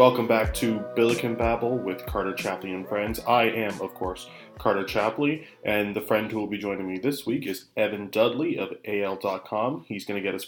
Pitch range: 100-115 Hz